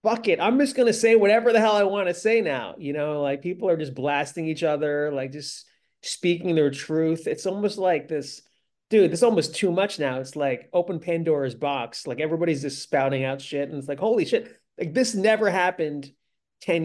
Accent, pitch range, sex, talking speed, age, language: American, 140-180 Hz, male, 215 wpm, 30-49, English